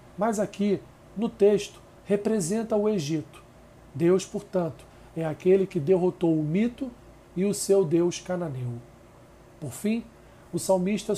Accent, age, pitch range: Brazilian, 40-59, 150-190 Hz